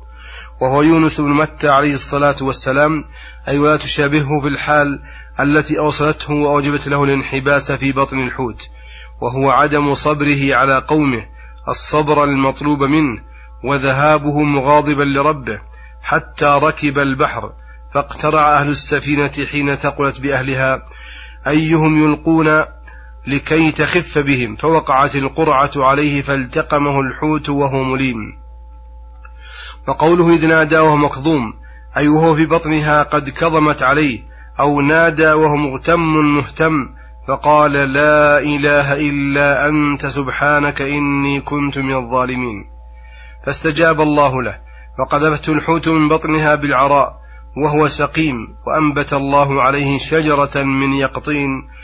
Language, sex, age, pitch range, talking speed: Arabic, male, 30-49, 135-150 Hz, 110 wpm